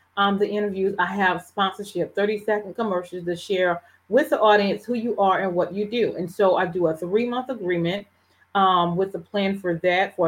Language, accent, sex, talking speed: English, American, female, 205 wpm